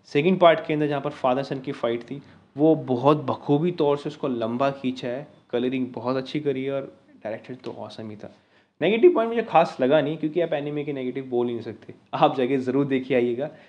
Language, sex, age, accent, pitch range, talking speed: Hindi, male, 20-39, native, 125-155 Hz, 225 wpm